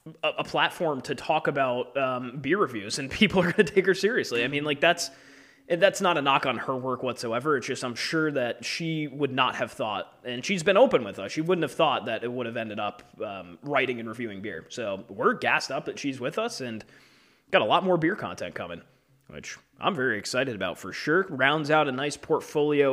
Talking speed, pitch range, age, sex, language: 230 wpm, 125-185 Hz, 20-39, male, English